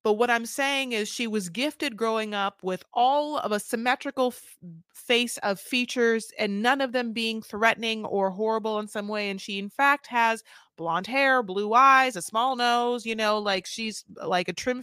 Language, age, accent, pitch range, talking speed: English, 30-49, American, 180-245 Hz, 195 wpm